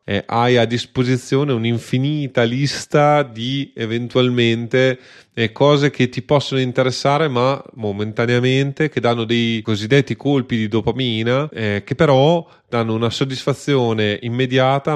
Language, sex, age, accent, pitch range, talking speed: Italian, male, 30-49, native, 110-130 Hz, 120 wpm